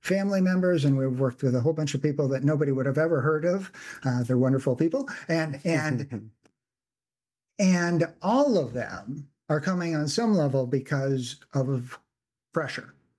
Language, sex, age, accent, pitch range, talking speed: English, male, 50-69, American, 130-165 Hz, 165 wpm